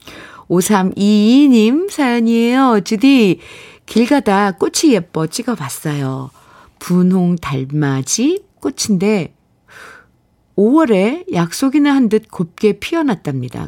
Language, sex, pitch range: Korean, female, 160-240 Hz